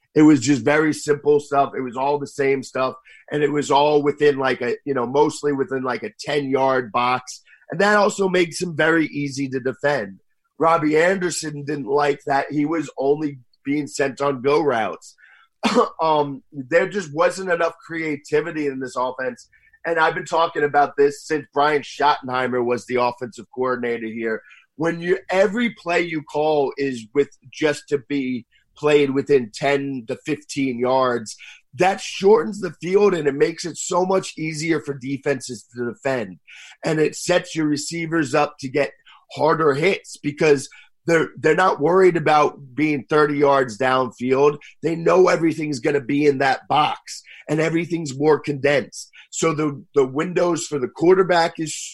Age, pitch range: 30-49, 140-165 Hz